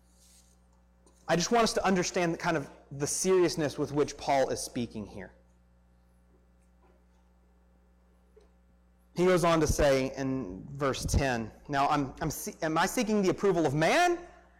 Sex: male